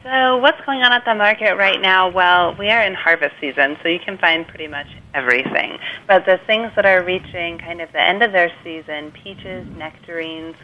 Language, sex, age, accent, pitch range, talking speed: English, female, 30-49, American, 145-165 Hz, 210 wpm